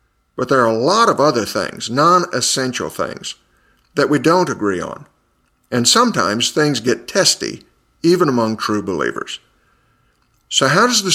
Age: 50-69